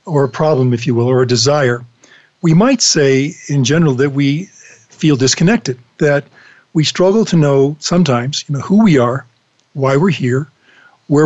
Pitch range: 140-180 Hz